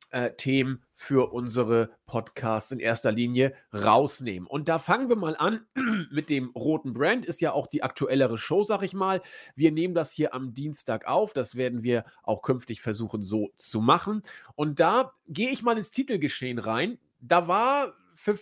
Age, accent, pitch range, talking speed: 40-59, German, 130-195 Hz, 175 wpm